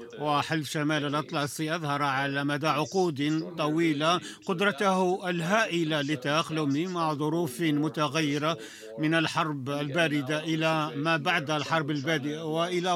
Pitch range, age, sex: 150-170 Hz, 50-69, male